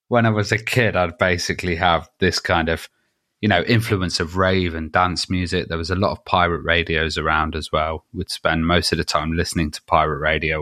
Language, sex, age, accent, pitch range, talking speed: English, male, 20-39, British, 80-95 Hz, 220 wpm